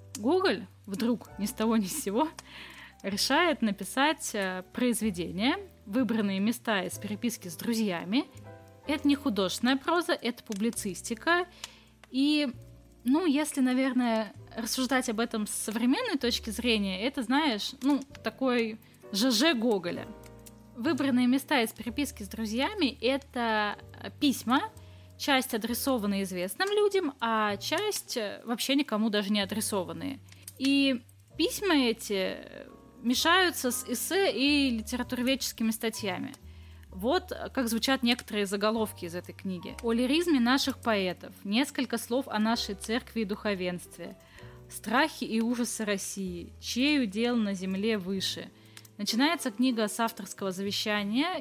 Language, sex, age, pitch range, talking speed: Russian, female, 10-29, 205-270 Hz, 120 wpm